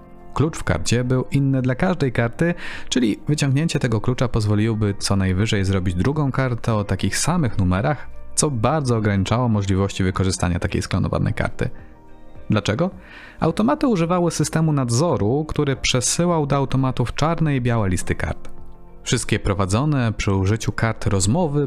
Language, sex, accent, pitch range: Polish, male, native, 100-140 Hz